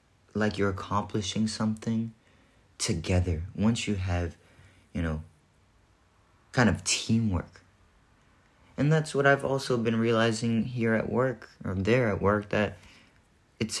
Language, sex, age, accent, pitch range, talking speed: English, male, 30-49, American, 90-110 Hz, 125 wpm